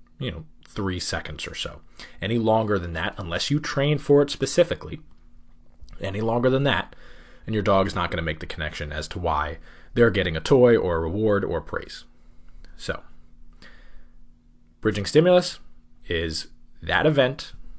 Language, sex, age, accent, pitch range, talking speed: English, male, 20-39, American, 80-110 Hz, 160 wpm